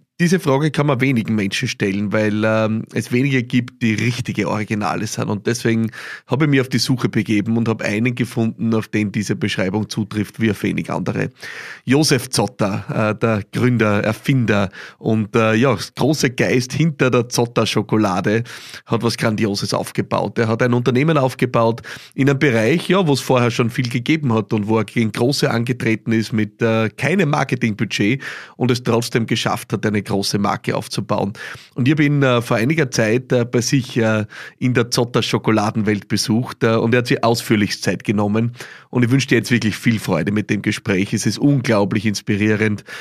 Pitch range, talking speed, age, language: 110-125 Hz, 185 wpm, 30-49, German